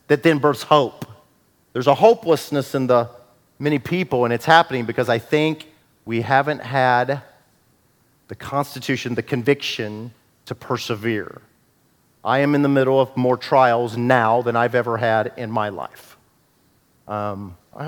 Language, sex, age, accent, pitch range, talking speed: English, male, 40-59, American, 115-140 Hz, 150 wpm